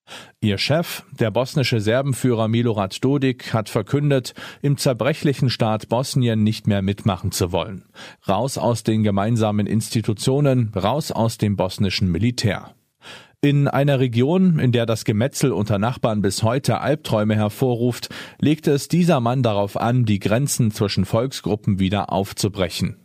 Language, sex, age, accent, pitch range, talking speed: German, male, 40-59, German, 105-130 Hz, 140 wpm